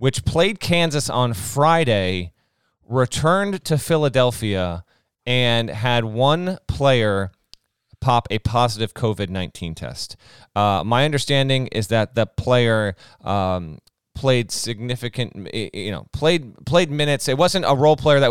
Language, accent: English, American